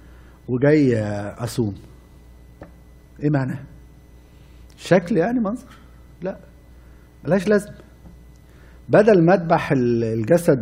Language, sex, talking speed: Arabic, male, 75 wpm